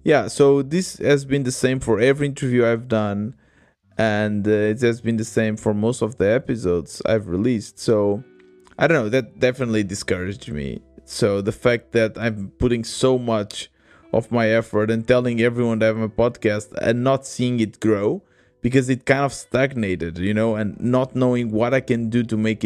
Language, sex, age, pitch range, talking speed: English, male, 20-39, 105-125 Hz, 195 wpm